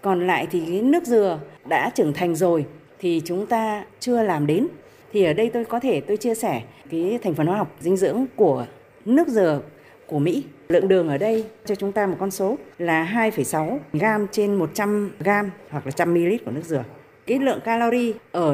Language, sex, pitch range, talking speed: Vietnamese, female, 175-255 Hz, 210 wpm